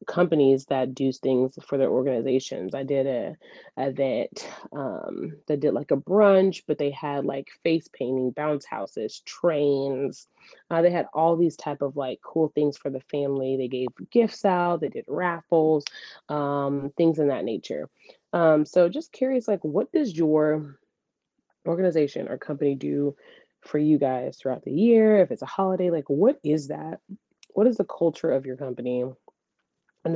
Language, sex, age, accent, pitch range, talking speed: English, female, 20-39, American, 135-175 Hz, 170 wpm